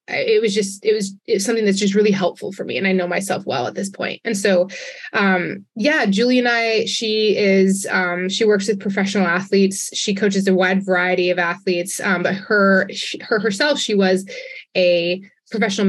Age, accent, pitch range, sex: 20-39, American, 185-240 Hz, female